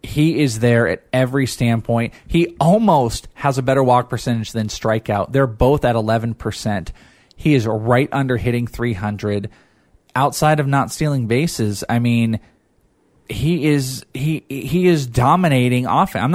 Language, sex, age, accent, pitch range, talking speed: English, male, 20-39, American, 115-145 Hz, 155 wpm